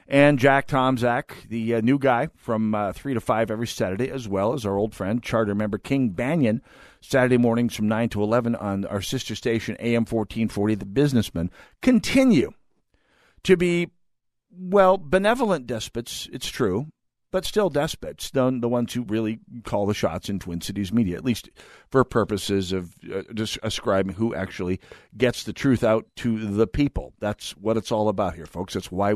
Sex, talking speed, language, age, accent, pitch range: male, 175 wpm, English, 50-69, American, 105-135 Hz